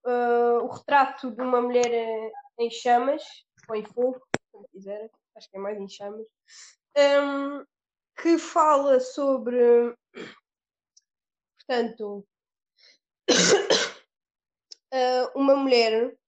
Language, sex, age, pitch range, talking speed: Portuguese, female, 20-39, 235-295 Hz, 100 wpm